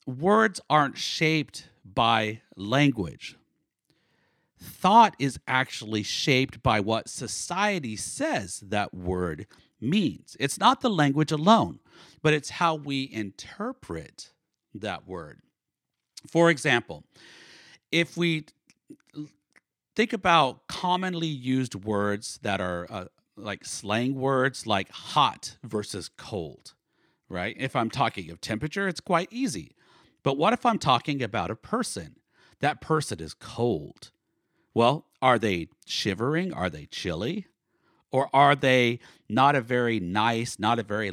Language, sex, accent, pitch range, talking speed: English, male, American, 105-150 Hz, 125 wpm